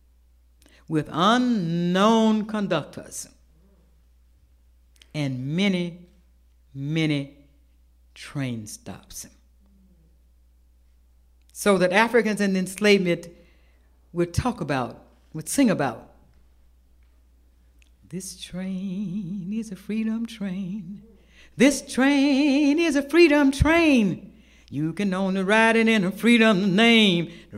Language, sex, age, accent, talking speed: English, female, 60-79, American, 90 wpm